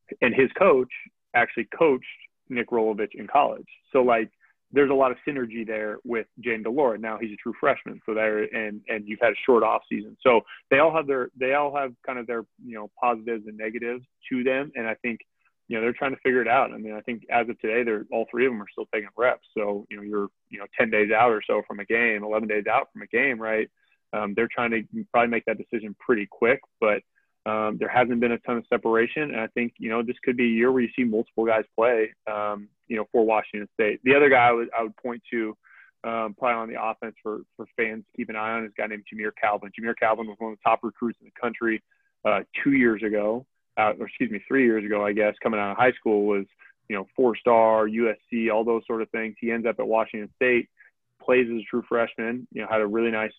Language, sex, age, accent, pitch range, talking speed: English, male, 20-39, American, 110-120 Hz, 255 wpm